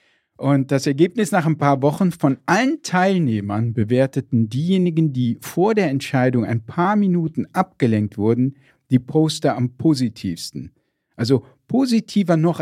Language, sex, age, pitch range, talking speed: German, male, 50-69, 120-165 Hz, 135 wpm